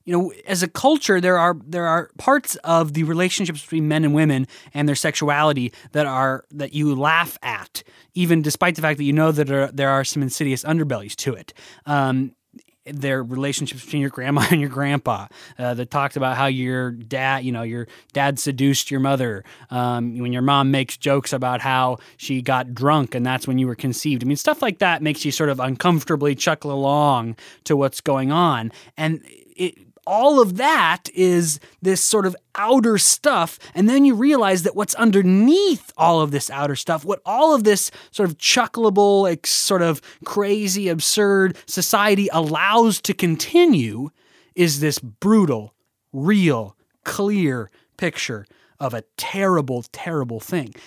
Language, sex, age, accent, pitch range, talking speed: English, male, 20-39, American, 135-190 Hz, 170 wpm